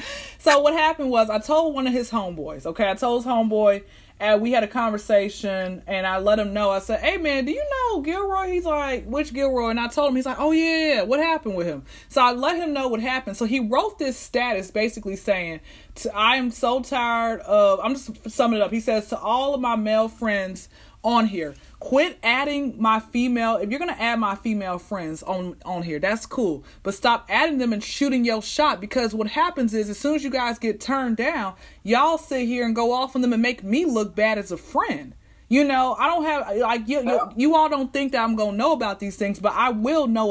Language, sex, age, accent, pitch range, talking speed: English, female, 30-49, American, 210-270 Hz, 240 wpm